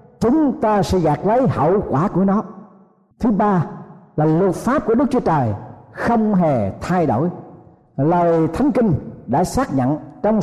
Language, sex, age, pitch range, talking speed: Vietnamese, male, 60-79, 155-225 Hz, 165 wpm